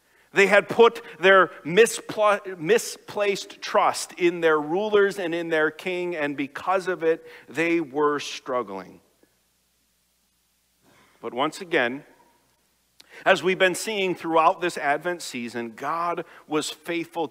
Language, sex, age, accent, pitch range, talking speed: English, male, 50-69, American, 145-200 Hz, 120 wpm